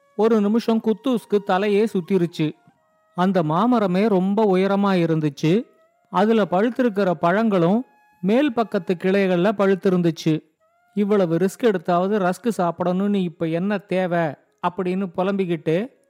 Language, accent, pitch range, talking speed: Tamil, native, 180-225 Hz, 105 wpm